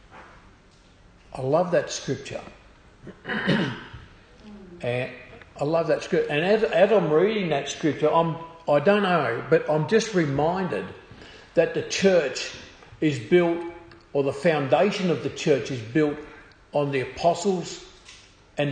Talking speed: 130 wpm